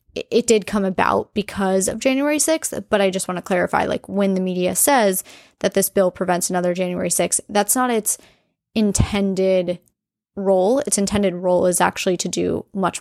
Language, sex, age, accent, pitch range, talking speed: English, female, 20-39, American, 185-220 Hz, 180 wpm